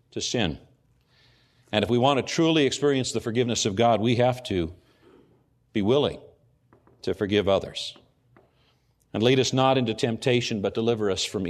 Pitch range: 120-145 Hz